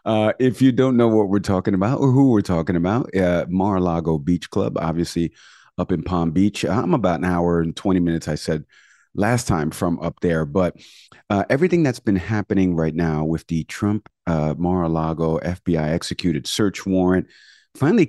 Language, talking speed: English, 180 wpm